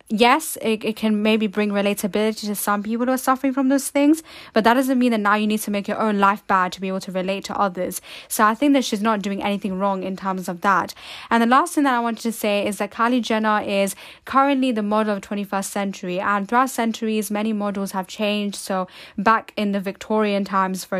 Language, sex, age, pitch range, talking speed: English, female, 10-29, 195-230 Hz, 240 wpm